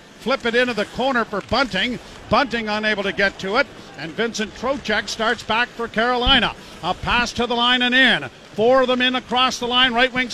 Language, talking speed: English, 210 wpm